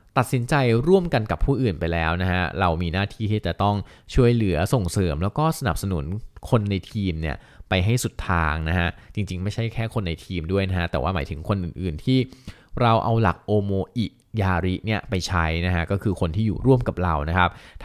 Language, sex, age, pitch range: Thai, male, 20-39, 90-110 Hz